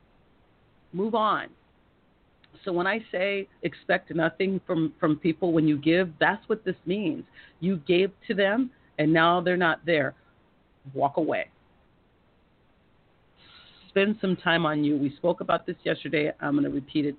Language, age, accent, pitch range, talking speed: English, 40-59, American, 140-180 Hz, 155 wpm